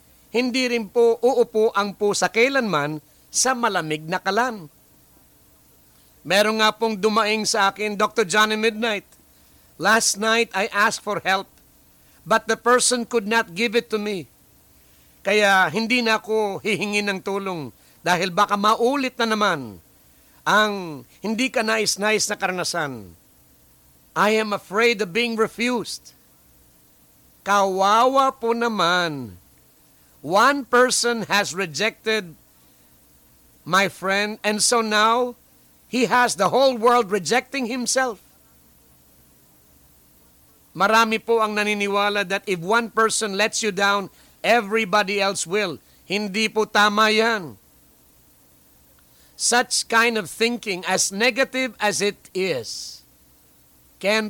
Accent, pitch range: Filipino, 145-225 Hz